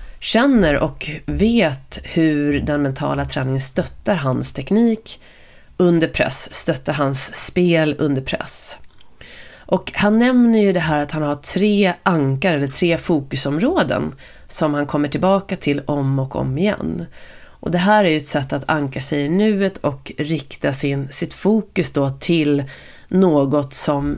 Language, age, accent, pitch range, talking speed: Swedish, 30-49, native, 145-180 Hz, 150 wpm